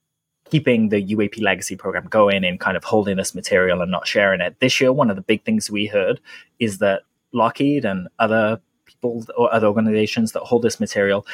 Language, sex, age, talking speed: English, male, 20-39, 200 wpm